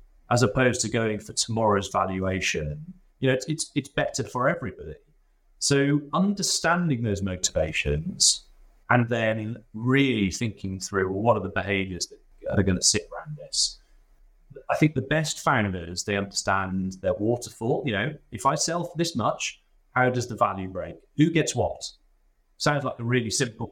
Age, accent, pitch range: 30-49, British, 100-130 Hz